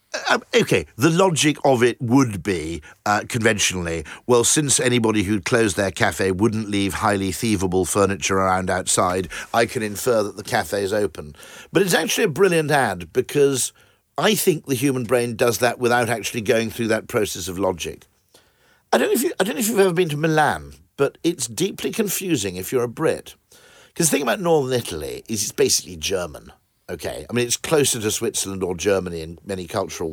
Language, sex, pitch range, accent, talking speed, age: English, male, 100-140 Hz, British, 195 wpm, 50-69